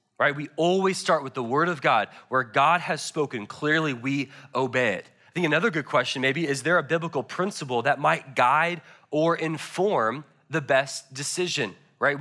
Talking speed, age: 180 wpm, 20-39